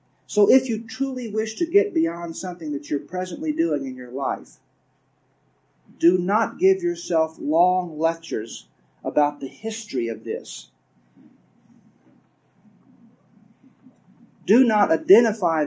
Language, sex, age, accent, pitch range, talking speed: English, male, 50-69, American, 155-245 Hz, 115 wpm